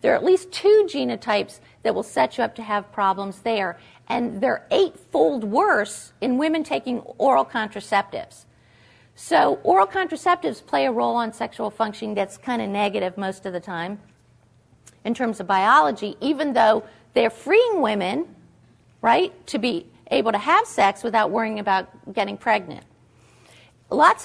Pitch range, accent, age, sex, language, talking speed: 195-275 Hz, American, 50-69, female, English, 155 wpm